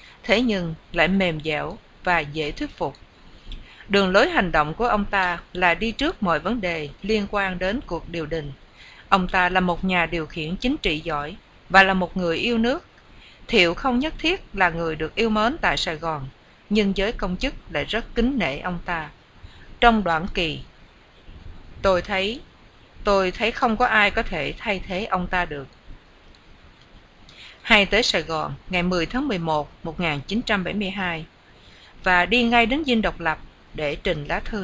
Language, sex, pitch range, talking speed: English, female, 165-215 Hz, 180 wpm